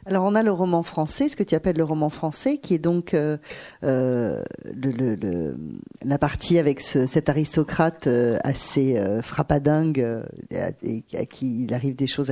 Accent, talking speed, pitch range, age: French, 190 wpm, 145-205 Hz, 40-59